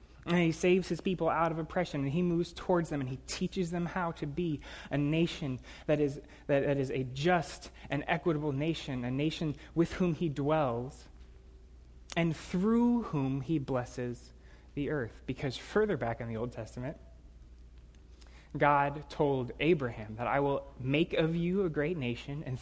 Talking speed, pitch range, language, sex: 170 wpm, 125-170 Hz, English, male